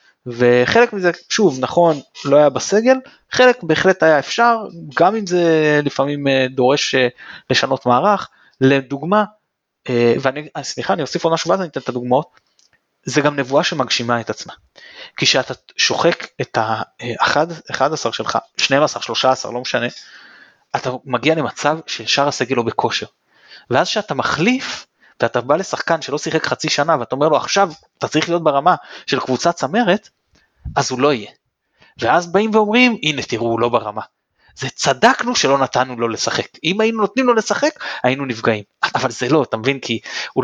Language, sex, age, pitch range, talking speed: Hebrew, male, 20-39, 130-195 Hz, 155 wpm